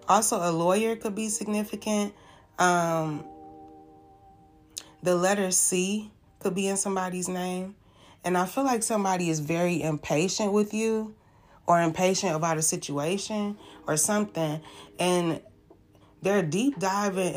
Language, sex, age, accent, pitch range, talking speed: English, female, 20-39, American, 160-195 Hz, 125 wpm